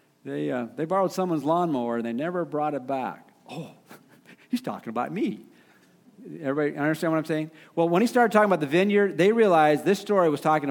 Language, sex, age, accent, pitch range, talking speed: English, male, 50-69, American, 135-180 Hz, 200 wpm